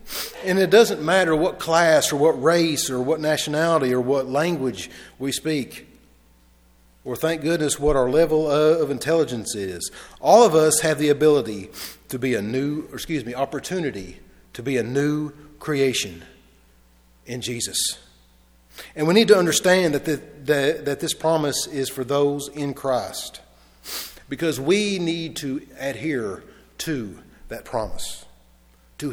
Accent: American